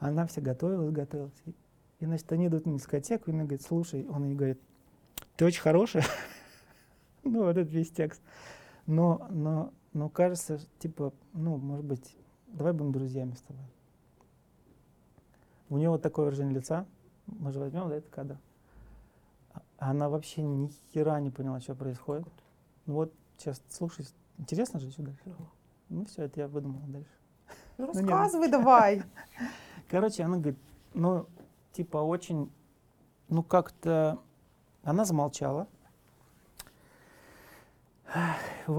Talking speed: 130 wpm